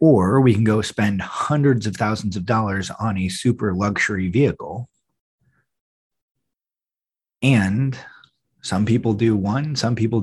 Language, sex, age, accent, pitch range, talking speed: English, male, 30-49, American, 90-115 Hz, 130 wpm